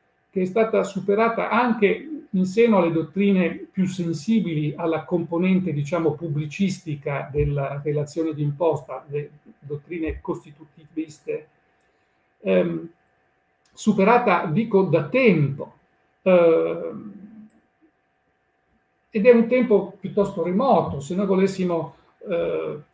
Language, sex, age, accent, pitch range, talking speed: Italian, male, 50-69, native, 155-200 Hz, 100 wpm